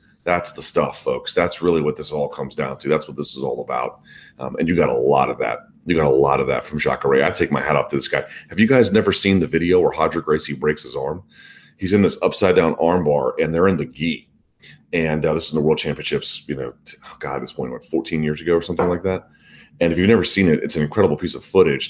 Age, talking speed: 30-49, 275 wpm